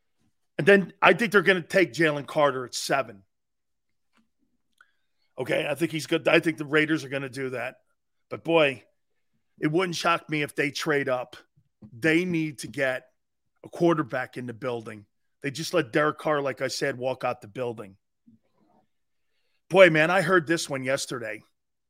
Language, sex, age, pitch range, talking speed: English, male, 40-59, 130-165 Hz, 175 wpm